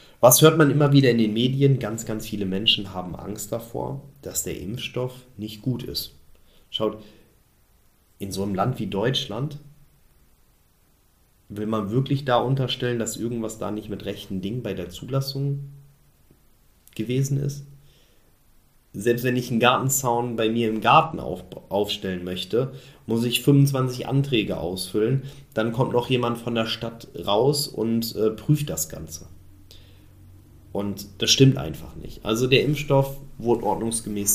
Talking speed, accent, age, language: 145 wpm, German, 30-49, German